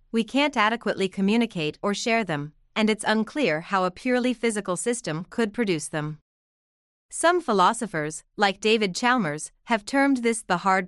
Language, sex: English, female